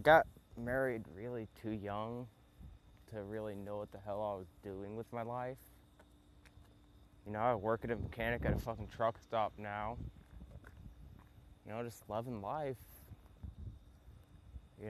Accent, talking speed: American, 145 wpm